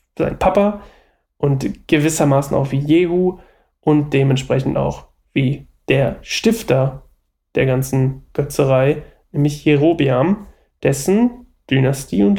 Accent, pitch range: German, 130-160 Hz